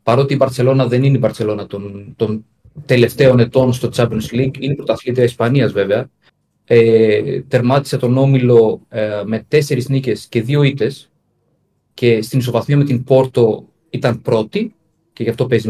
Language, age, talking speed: Greek, 30-49, 160 wpm